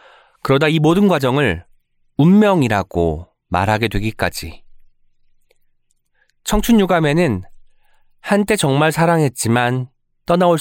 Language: Korean